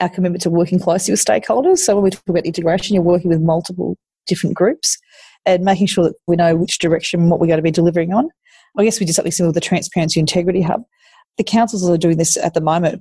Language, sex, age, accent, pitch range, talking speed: English, female, 30-49, Australian, 170-195 Hz, 250 wpm